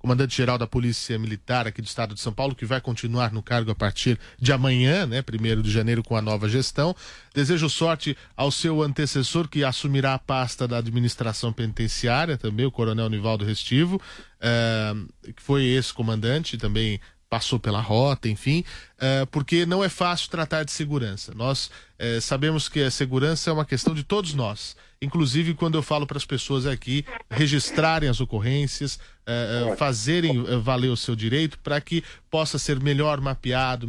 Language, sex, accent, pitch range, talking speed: Portuguese, male, Brazilian, 120-145 Hz, 165 wpm